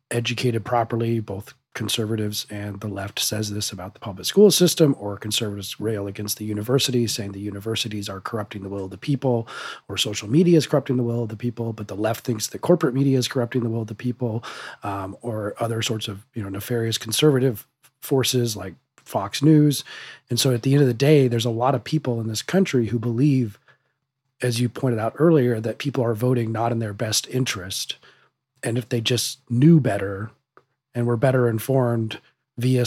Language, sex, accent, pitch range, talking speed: English, male, American, 110-130 Hz, 200 wpm